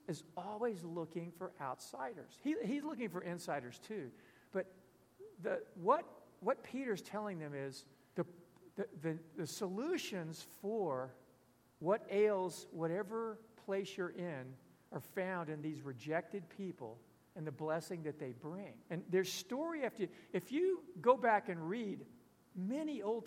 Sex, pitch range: male, 150-205 Hz